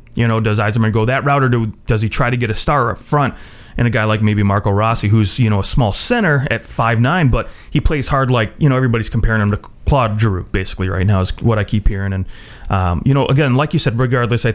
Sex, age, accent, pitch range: male, 30-49, American, 105-120 Hz